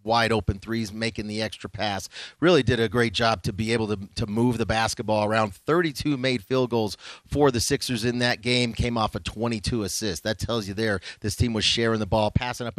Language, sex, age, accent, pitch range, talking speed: English, male, 30-49, American, 105-120 Hz, 225 wpm